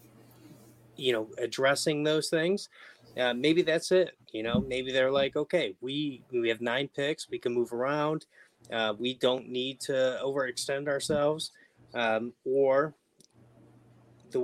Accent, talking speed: American, 140 wpm